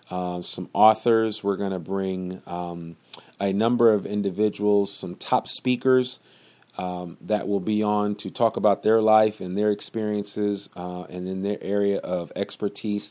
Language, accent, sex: English, American, male